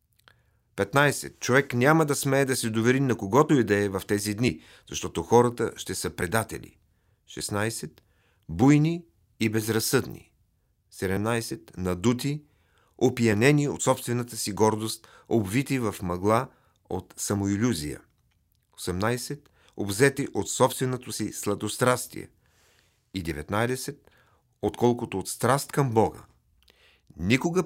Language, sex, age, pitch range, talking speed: Bulgarian, male, 40-59, 100-125 Hz, 110 wpm